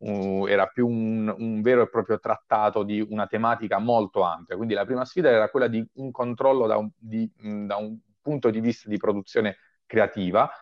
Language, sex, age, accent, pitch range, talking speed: Italian, male, 30-49, native, 100-115 Hz, 175 wpm